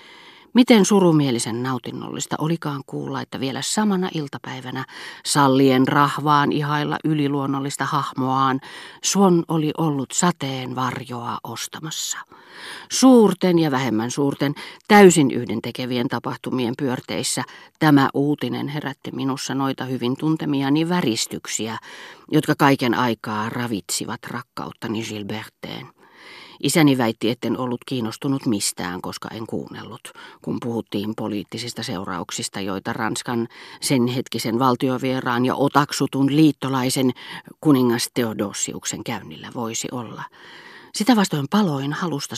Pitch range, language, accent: 120-155 Hz, Finnish, native